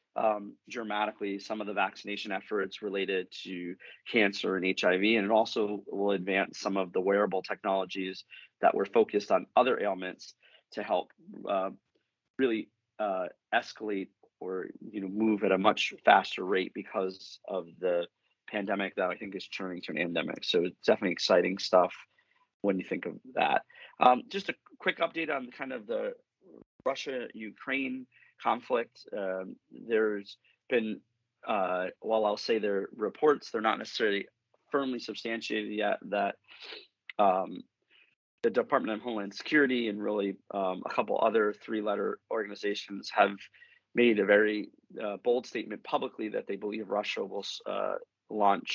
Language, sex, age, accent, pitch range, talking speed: English, male, 30-49, American, 100-135 Hz, 150 wpm